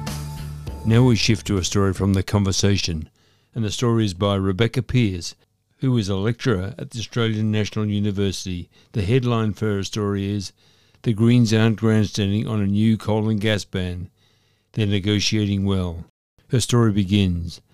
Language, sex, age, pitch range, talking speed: English, male, 60-79, 100-115 Hz, 160 wpm